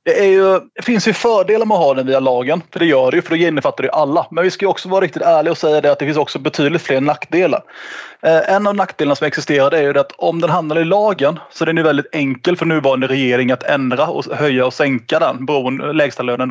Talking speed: 280 wpm